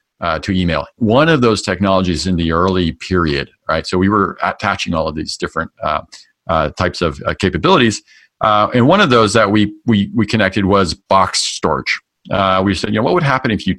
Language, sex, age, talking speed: English, male, 40-59, 215 wpm